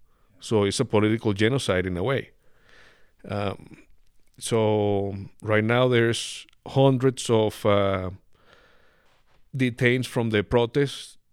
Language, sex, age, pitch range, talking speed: English, male, 50-69, 105-130 Hz, 105 wpm